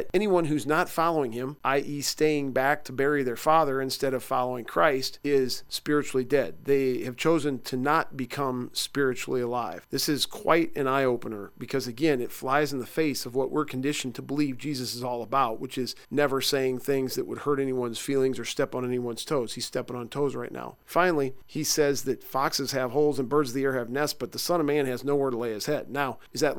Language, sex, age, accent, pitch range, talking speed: English, male, 40-59, American, 125-145 Hz, 225 wpm